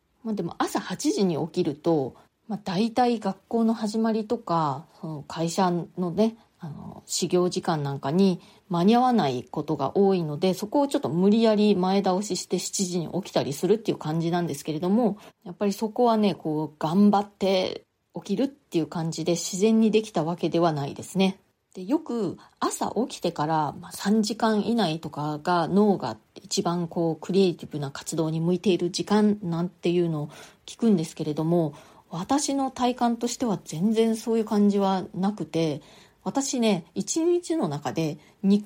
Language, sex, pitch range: Japanese, female, 165-215 Hz